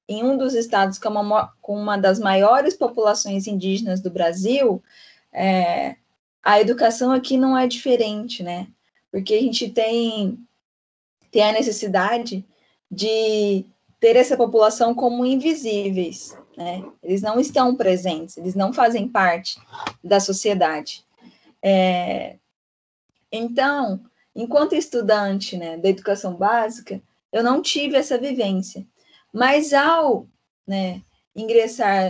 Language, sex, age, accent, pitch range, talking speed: Portuguese, female, 10-29, Brazilian, 195-245 Hz, 110 wpm